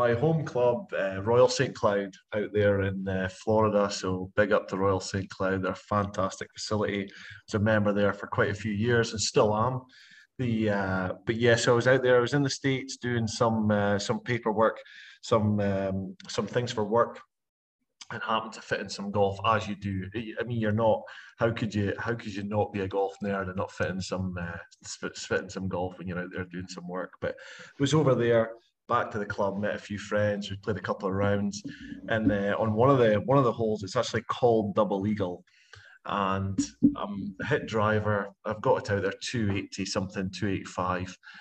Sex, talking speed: male, 220 wpm